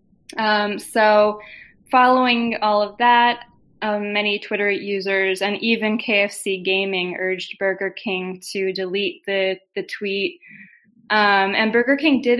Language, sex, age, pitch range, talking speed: English, female, 20-39, 190-225 Hz, 130 wpm